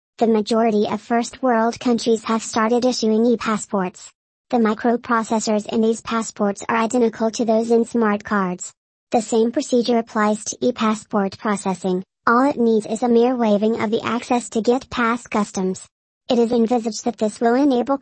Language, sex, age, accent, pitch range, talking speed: English, male, 40-59, American, 220-245 Hz, 165 wpm